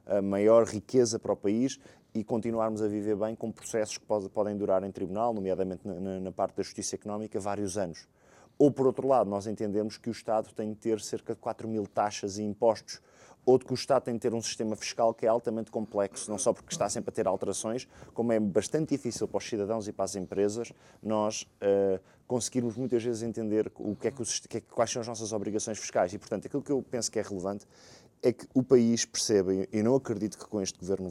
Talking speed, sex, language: 210 wpm, male, Portuguese